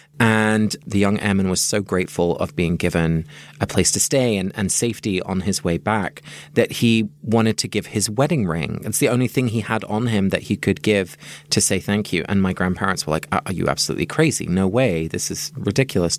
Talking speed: 220 wpm